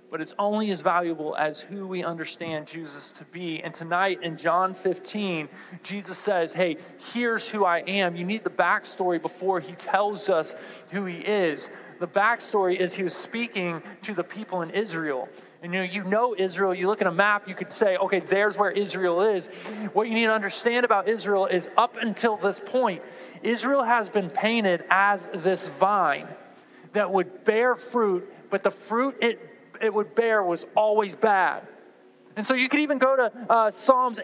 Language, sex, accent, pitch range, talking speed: English, male, American, 185-240 Hz, 190 wpm